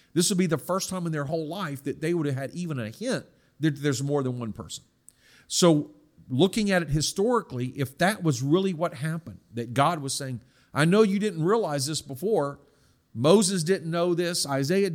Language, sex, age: English, male, 50-69